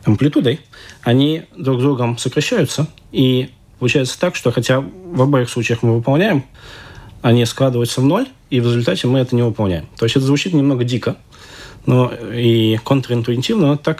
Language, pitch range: Russian, 110-130 Hz